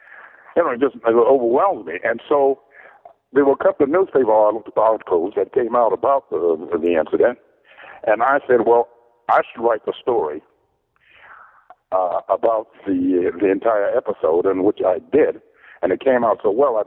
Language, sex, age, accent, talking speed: English, male, 60-79, American, 165 wpm